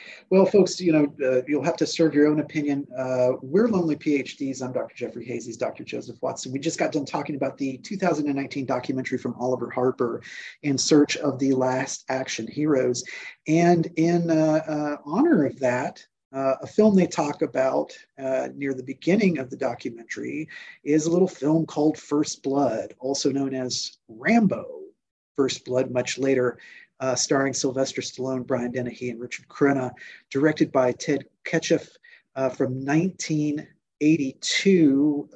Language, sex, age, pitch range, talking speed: English, male, 40-59, 130-160 Hz, 160 wpm